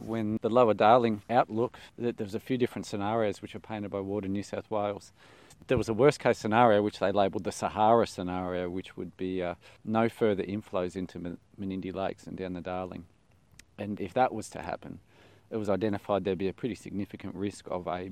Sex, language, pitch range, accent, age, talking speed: male, English, 95-110 Hz, Australian, 40-59, 200 wpm